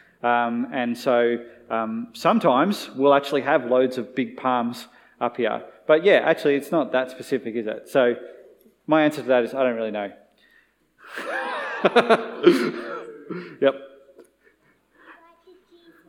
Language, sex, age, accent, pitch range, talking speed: English, male, 30-49, Australian, 120-155 Hz, 125 wpm